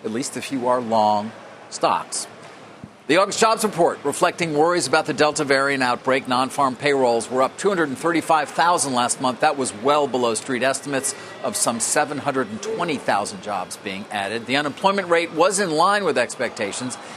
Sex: male